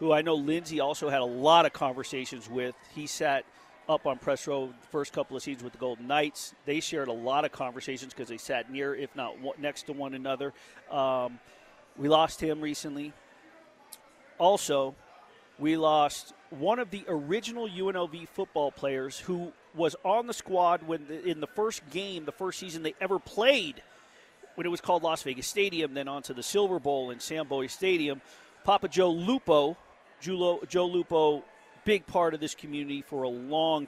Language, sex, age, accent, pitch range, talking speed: English, male, 40-59, American, 135-160 Hz, 185 wpm